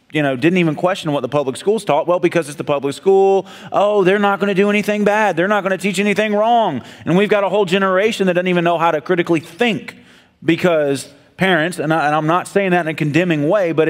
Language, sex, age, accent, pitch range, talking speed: English, male, 30-49, American, 155-195 Hz, 245 wpm